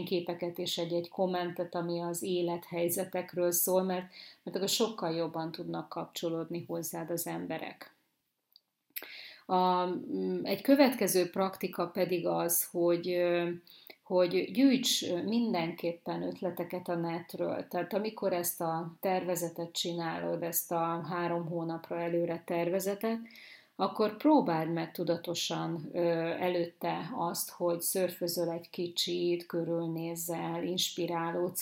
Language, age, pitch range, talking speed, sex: Hungarian, 30-49, 170-185 Hz, 100 wpm, female